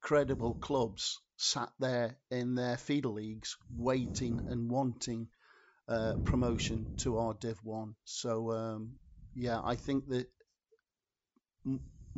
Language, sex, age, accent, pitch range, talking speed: English, male, 50-69, British, 110-135 Hz, 120 wpm